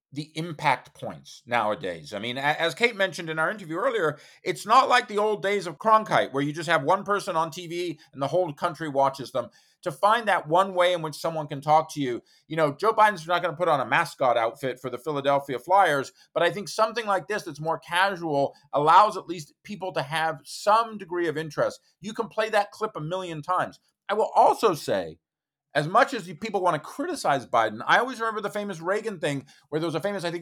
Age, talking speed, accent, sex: 40-59, 230 wpm, American, male